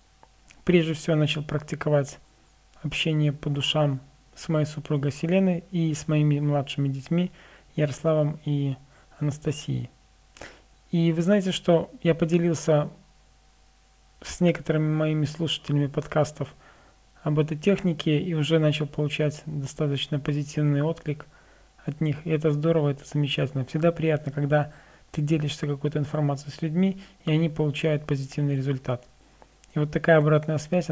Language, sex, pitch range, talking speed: Russian, male, 145-160 Hz, 130 wpm